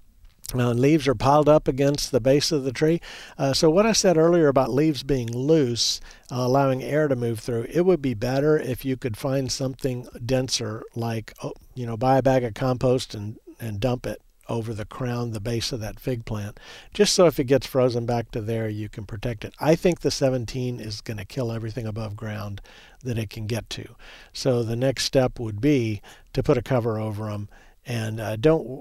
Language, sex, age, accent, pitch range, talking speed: English, male, 50-69, American, 110-135 Hz, 215 wpm